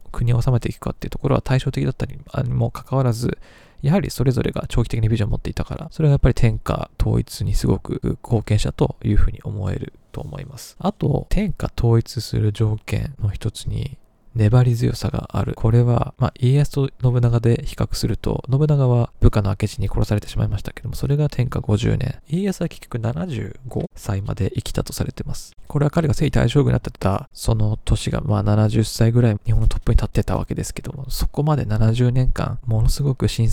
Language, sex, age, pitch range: Japanese, male, 20-39, 110-135 Hz